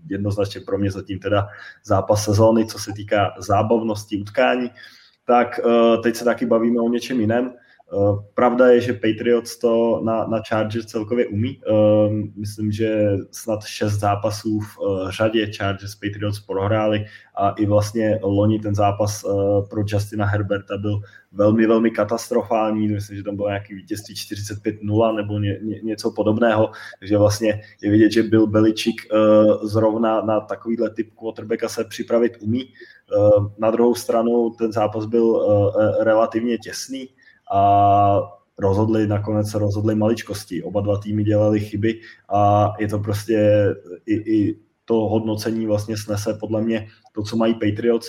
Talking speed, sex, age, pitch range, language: 140 wpm, male, 20-39, 105-115 Hz, Czech